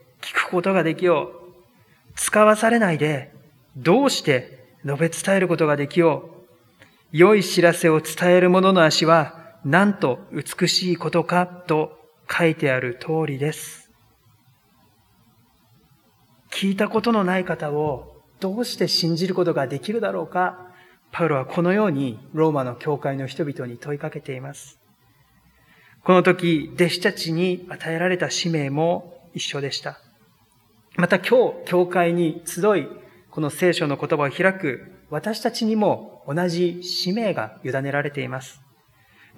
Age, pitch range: 40-59, 150-180 Hz